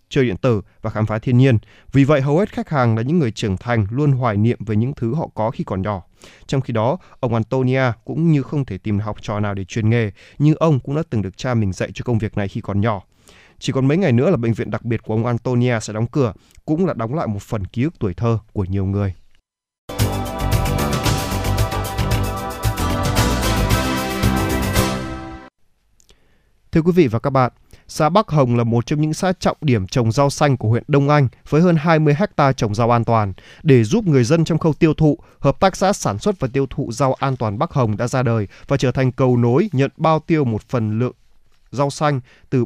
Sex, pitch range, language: male, 110-140 Hz, Vietnamese